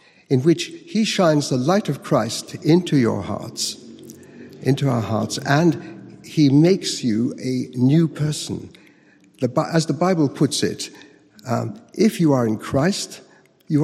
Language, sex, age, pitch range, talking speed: English, male, 60-79, 120-160 Hz, 145 wpm